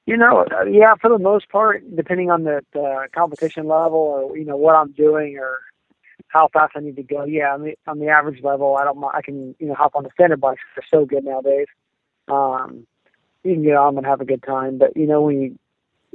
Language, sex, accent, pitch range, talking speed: English, male, American, 135-155 Hz, 240 wpm